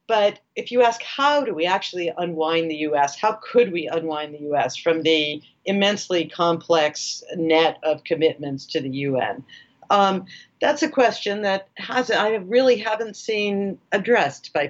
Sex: female